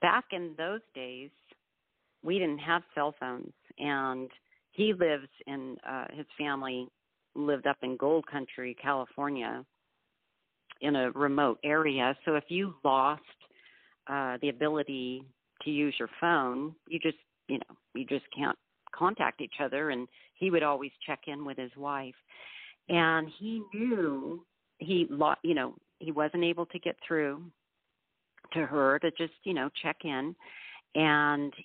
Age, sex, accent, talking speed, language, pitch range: 50-69, female, American, 150 wpm, English, 135-165 Hz